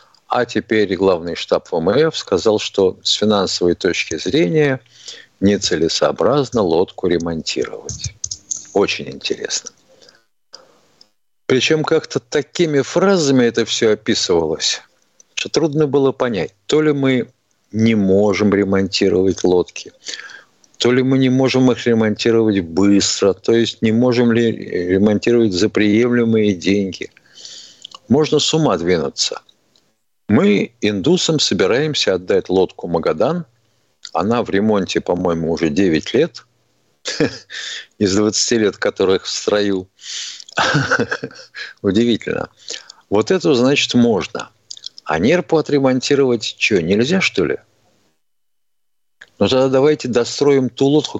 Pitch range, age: 100-135 Hz, 50-69